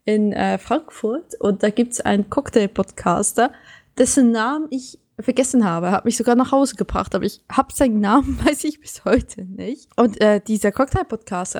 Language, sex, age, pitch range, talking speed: German, female, 20-39, 195-235 Hz, 175 wpm